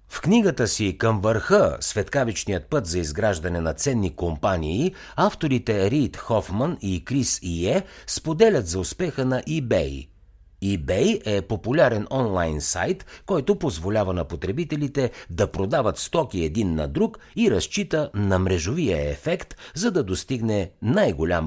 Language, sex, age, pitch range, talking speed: Bulgarian, male, 50-69, 90-140 Hz, 130 wpm